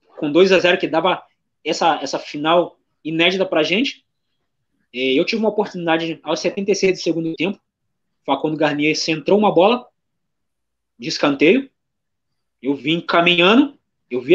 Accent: Brazilian